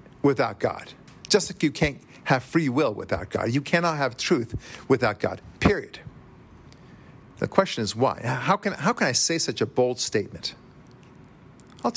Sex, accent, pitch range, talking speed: male, American, 115-155 Hz, 165 wpm